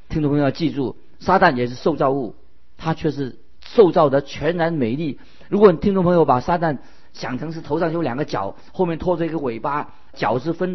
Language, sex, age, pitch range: Chinese, male, 50-69, 125-165 Hz